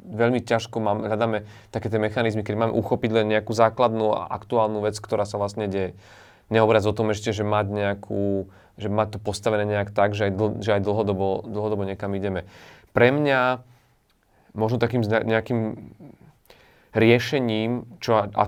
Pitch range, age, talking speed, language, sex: 105-115 Hz, 30-49, 150 wpm, Slovak, male